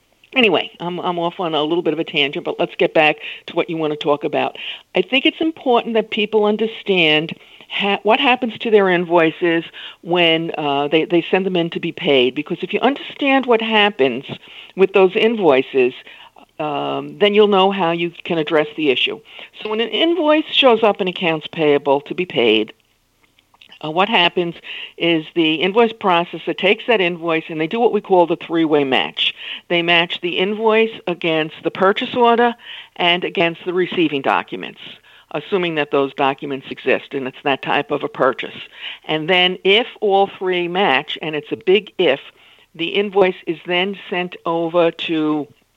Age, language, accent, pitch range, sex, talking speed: 50-69, English, American, 160-210 Hz, female, 180 wpm